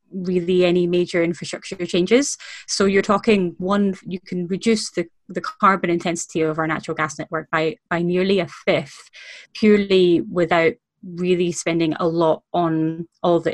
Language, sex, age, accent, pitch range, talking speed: English, female, 20-39, British, 165-195 Hz, 155 wpm